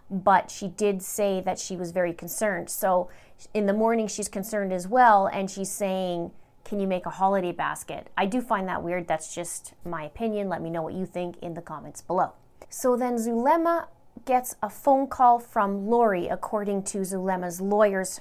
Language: English